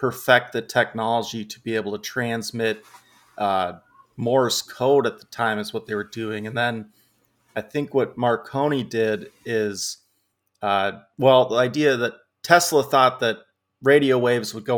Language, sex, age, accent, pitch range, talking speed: English, male, 30-49, American, 105-120 Hz, 160 wpm